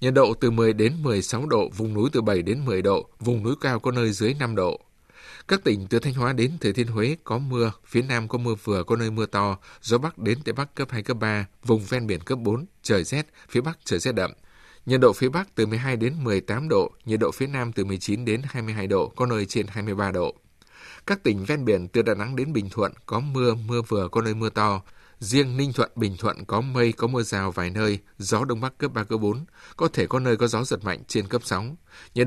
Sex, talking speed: male, 250 wpm